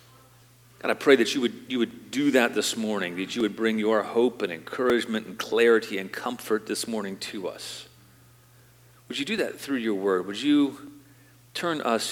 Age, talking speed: 40-59, 195 wpm